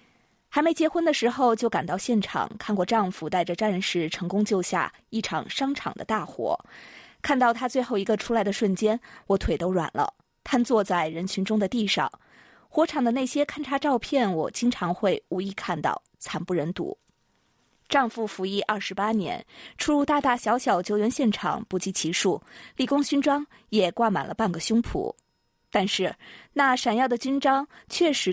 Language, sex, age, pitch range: Chinese, female, 20-39, 195-265 Hz